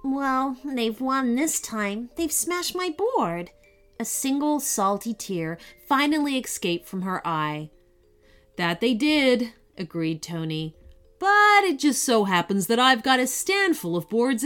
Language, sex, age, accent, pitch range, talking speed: English, female, 30-49, American, 175-270 Hz, 150 wpm